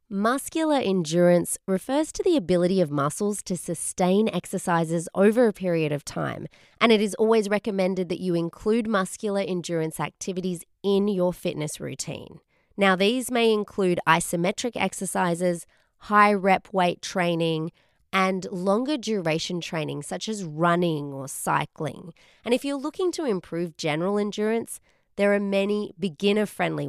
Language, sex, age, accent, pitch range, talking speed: English, female, 20-39, Australian, 165-205 Hz, 140 wpm